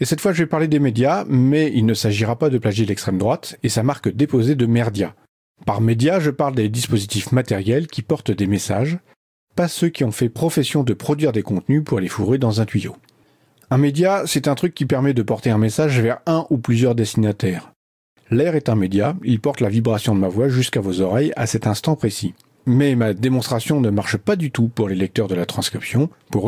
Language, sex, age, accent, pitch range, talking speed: French, male, 40-59, French, 110-140 Hz, 225 wpm